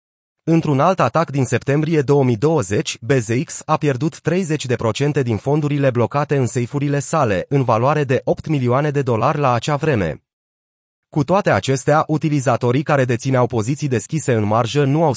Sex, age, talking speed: male, 30-49, 150 wpm